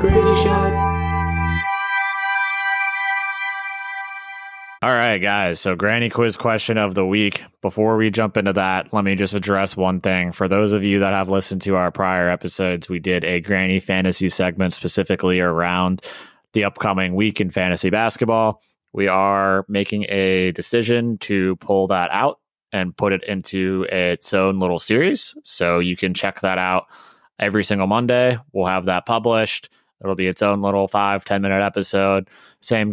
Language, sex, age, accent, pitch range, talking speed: English, male, 20-39, American, 90-110 Hz, 155 wpm